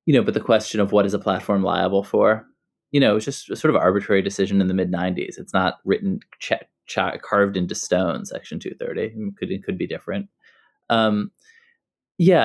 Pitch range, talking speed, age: 100-135 Hz, 205 wpm, 20-39